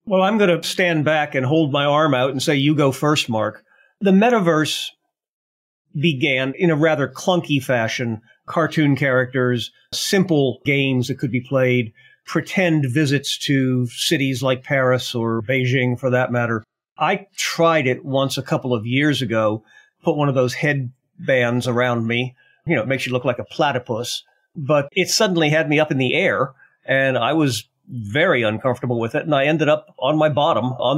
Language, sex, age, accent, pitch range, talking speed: English, male, 50-69, American, 125-160 Hz, 180 wpm